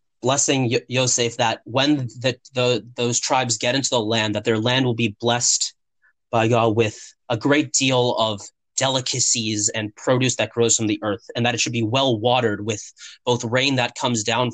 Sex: male